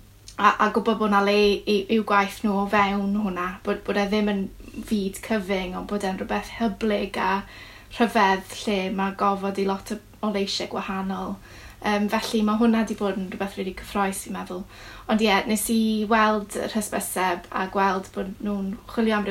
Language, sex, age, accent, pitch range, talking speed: English, female, 10-29, British, 190-215 Hz, 175 wpm